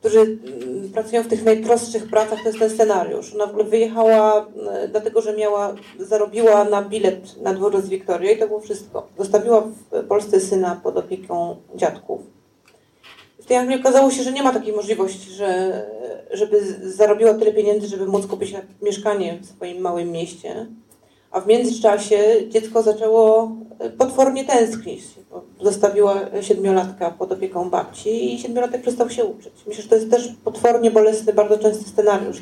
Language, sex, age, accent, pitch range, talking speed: Polish, female, 30-49, native, 195-230 Hz, 155 wpm